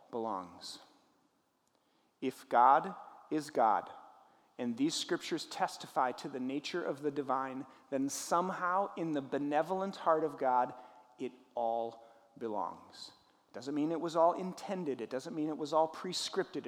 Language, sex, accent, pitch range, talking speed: English, male, American, 130-175 Hz, 145 wpm